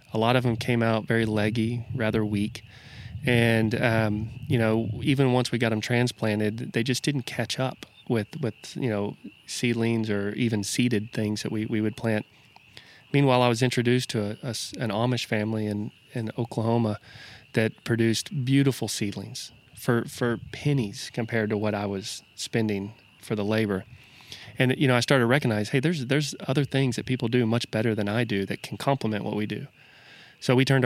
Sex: male